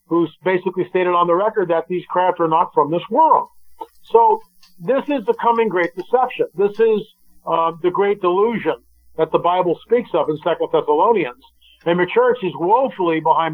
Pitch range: 175-225 Hz